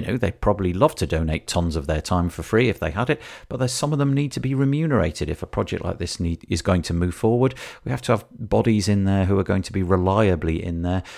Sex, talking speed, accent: male, 280 wpm, British